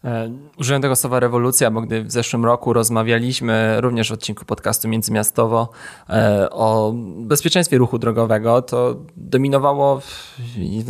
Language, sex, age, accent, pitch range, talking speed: Polish, male, 20-39, native, 115-130 Hz, 120 wpm